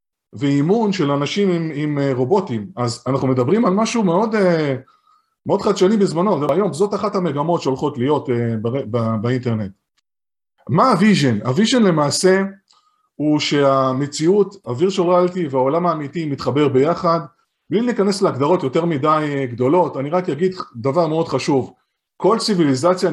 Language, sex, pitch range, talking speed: Hebrew, male, 140-195 Hz, 120 wpm